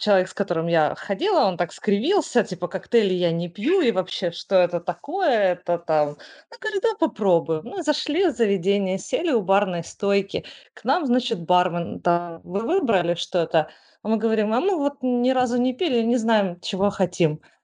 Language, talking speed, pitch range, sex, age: Ukrainian, 185 wpm, 185-240 Hz, female, 20-39